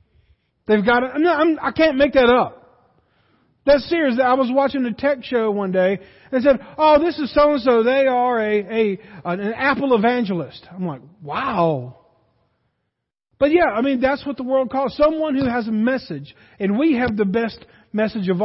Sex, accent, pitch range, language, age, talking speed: male, American, 205-270 Hz, English, 40-59, 190 wpm